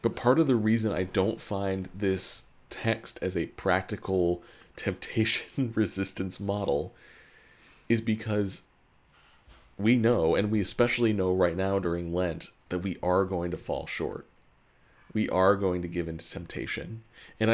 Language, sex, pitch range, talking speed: English, male, 90-110 Hz, 150 wpm